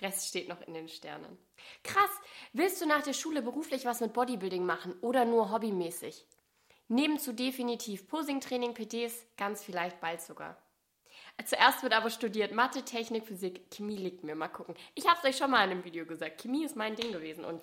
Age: 20-39